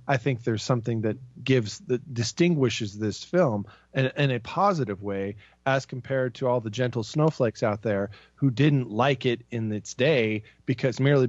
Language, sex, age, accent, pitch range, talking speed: English, male, 40-59, American, 105-135 Hz, 175 wpm